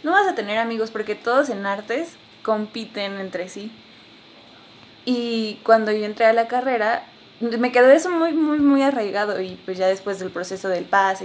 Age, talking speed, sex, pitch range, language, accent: 20-39, 180 wpm, female, 200-240 Hz, Spanish, Mexican